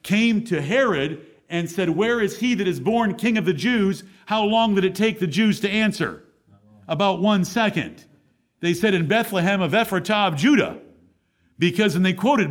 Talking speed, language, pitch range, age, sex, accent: 185 wpm, English, 170-220 Hz, 50-69, male, American